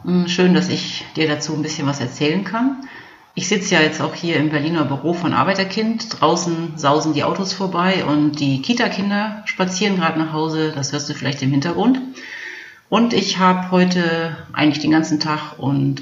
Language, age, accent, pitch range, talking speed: German, 40-59, German, 140-175 Hz, 180 wpm